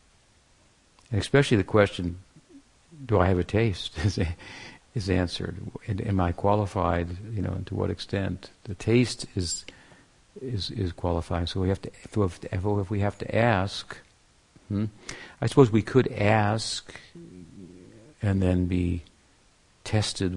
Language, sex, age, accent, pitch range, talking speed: English, male, 60-79, American, 90-105 Hz, 130 wpm